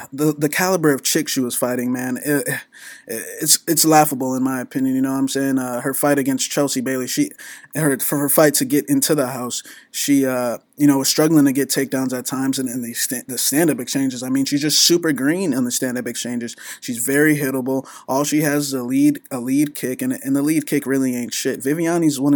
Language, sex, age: English, male, 20-39